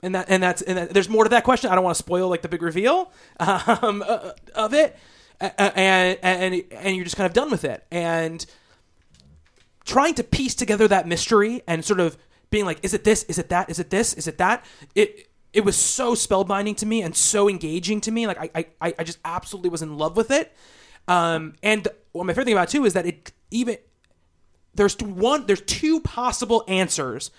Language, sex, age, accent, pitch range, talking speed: English, male, 20-39, American, 170-210 Hz, 220 wpm